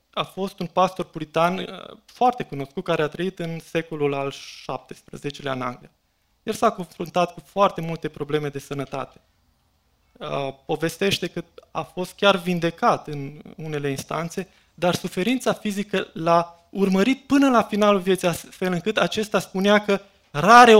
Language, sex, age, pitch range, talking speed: Romanian, male, 20-39, 150-195 Hz, 140 wpm